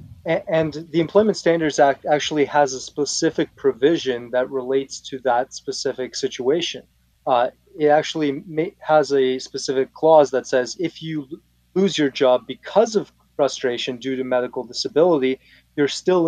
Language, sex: English, male